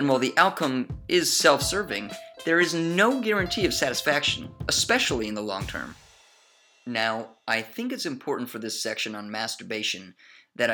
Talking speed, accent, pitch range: 155 wpm, American, 120-175 Hz